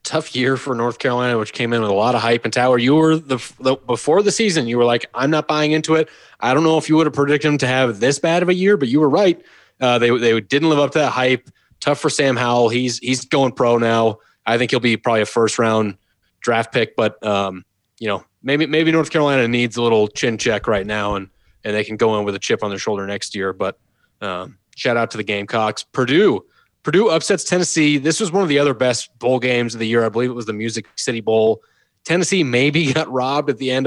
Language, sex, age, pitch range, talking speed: English, male, 30-49, 115-150 Hz, 255 wpm